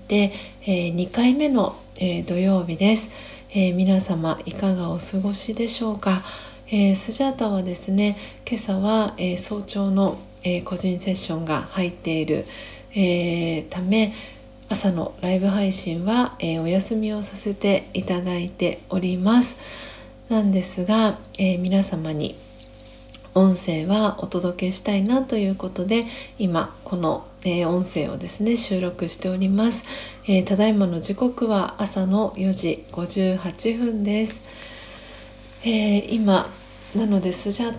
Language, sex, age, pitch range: Japanese, female, 40-59, 180-210 Hz